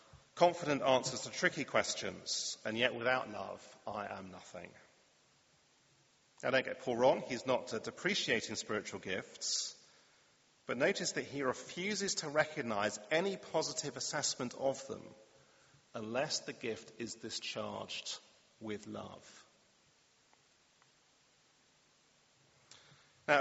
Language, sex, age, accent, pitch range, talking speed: English, male, 40-59, British, 115-160 Hz, 110 wpm